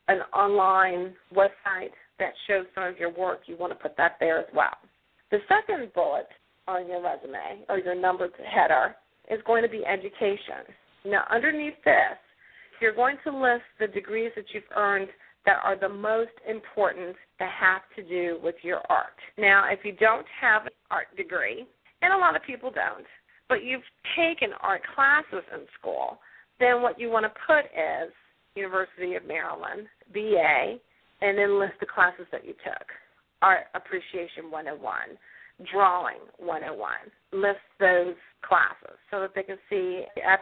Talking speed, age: 165 wpm, 40-59